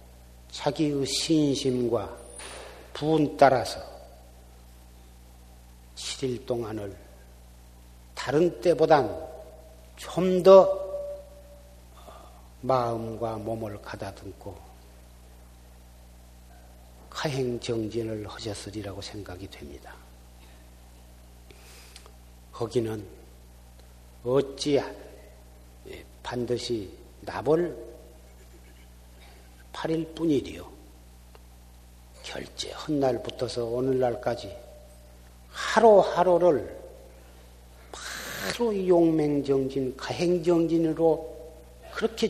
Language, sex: Korean, male